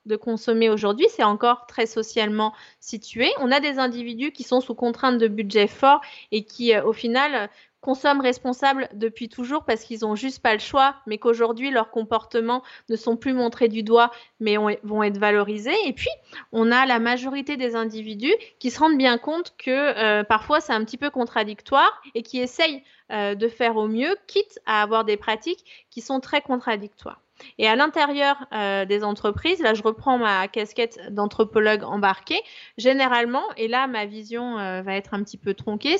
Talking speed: 185 wpm